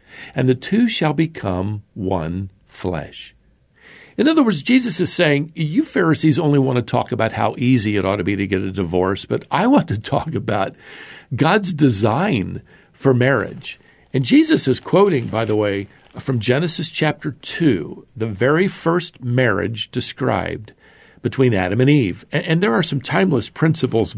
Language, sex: English, male